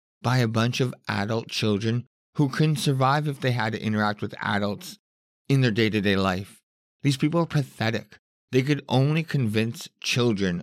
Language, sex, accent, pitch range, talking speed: English, male, American, 100-130 Hz, 165 wpm